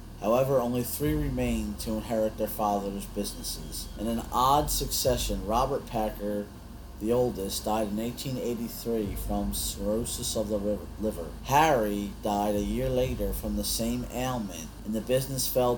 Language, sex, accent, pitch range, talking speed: English, male, American, 100-130 Hz, 145 wpm